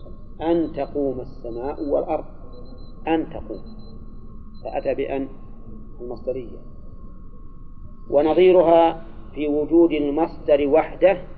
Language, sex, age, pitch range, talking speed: Arabic, male, 40-59, 120-155 Hz, 75 wpm